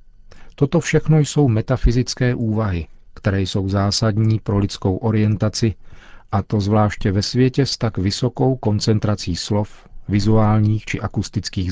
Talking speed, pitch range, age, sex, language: 125 wpm, 95-115 Hz, 40-59, male, Czech